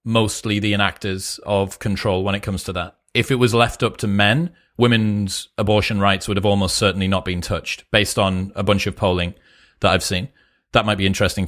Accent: British